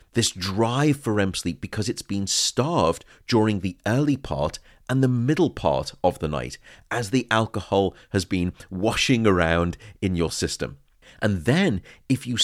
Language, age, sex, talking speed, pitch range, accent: English, 40-59, male, 165 wpm, 85-125 Hz, British